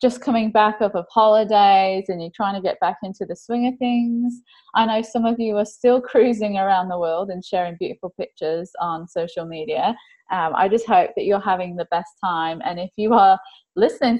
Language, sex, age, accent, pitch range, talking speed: English, female, 20-39, British, 185-235 Hz, 210 wpm